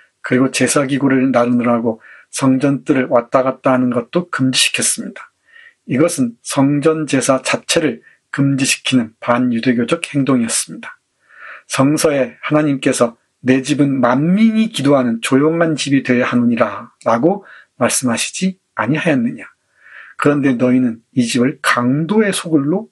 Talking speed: 95 wpm